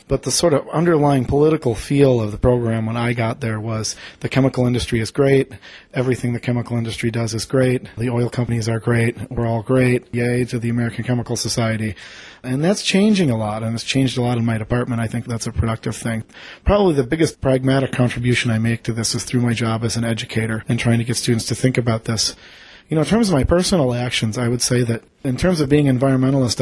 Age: 40-59